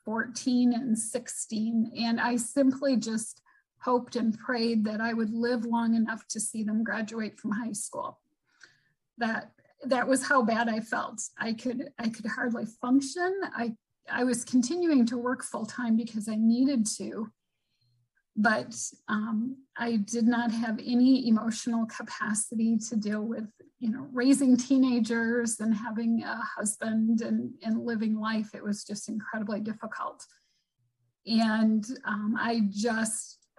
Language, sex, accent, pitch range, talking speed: English, female, American, 220-245 Hz, 145 wpm